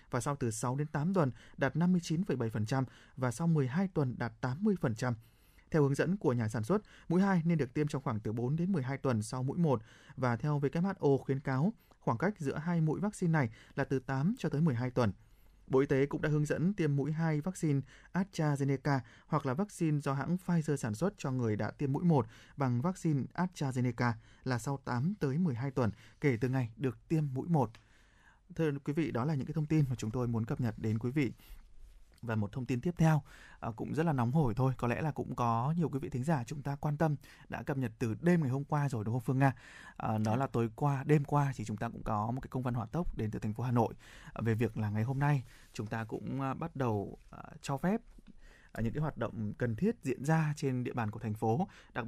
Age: 20-39